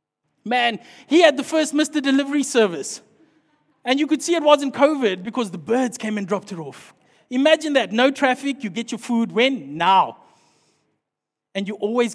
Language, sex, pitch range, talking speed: English, male, 230-280 Hz, 180 wpm